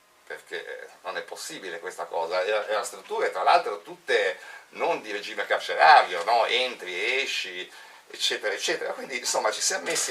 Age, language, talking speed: 40-59, Italian, 160 wpm